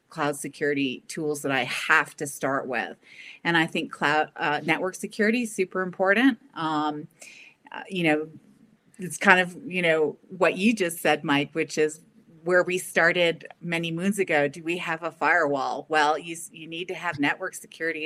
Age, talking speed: 30-49, 180 wpm